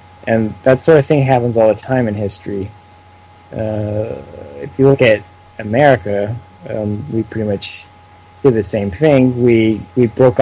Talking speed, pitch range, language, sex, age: 160 wpm, 105-135 Hz, English, male, 20-39